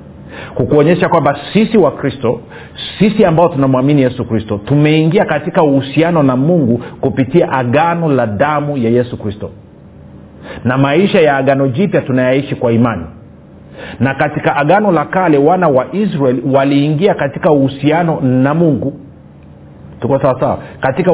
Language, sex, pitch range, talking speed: Swahili, male, 120-160 Hz, 130 wpm